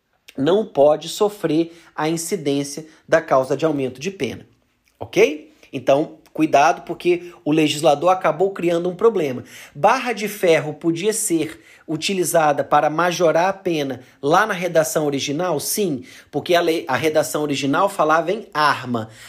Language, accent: Portuguese, Brazilian